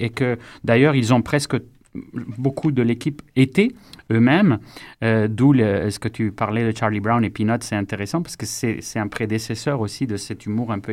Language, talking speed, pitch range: French, 205 wpm, 110-150 Hz